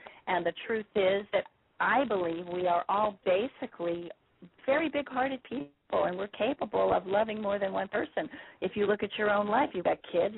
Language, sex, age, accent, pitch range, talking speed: English, female, 40-59, American, 180-220 Hz, 190 wpm